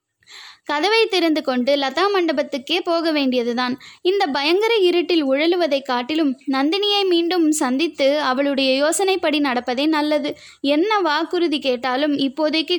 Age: 20-39